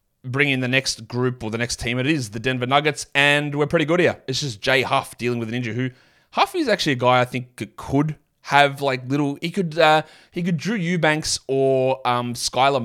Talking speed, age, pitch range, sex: 240 wpm, 20-39, 115-135 Hz, male